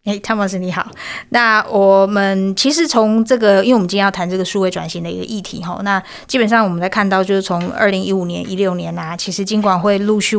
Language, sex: Chinese, female